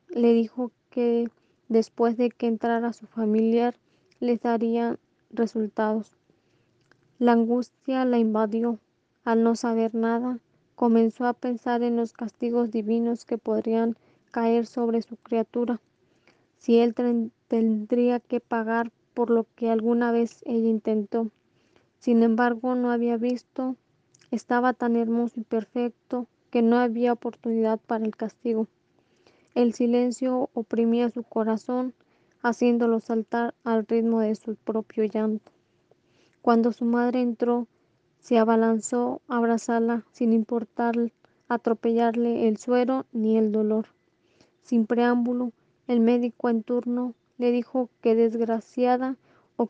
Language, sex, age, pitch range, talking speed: Spanish, female, 20-39, 230-245 Hz, 125 wpm